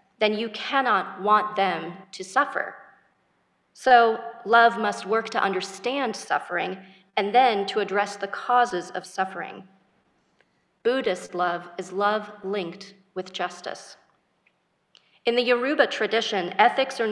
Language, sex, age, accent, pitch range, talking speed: English, female, 40-59, American, 195-230 Hz, 125 wpm